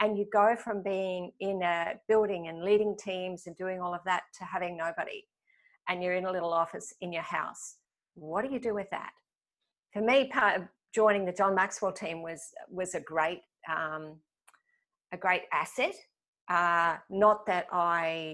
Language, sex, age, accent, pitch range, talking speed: English, female, 50-69, Australian, 170-215 Hz, 180 wpm